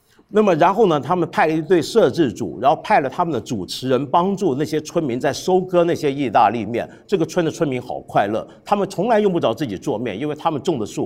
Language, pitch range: Chinese, 120-190 Hz